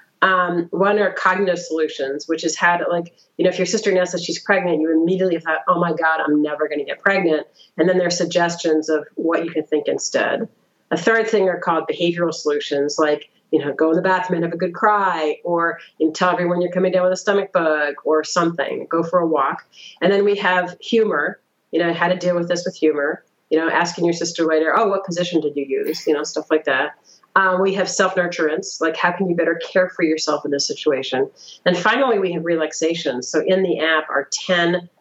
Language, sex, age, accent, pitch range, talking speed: English, female, 40-59, American, 155-185 Hz, 230 wpm